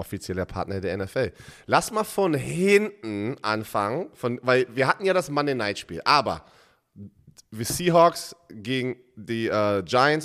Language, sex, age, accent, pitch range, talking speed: German, male, 30-49, German, 115-150 Hz, 135 wpm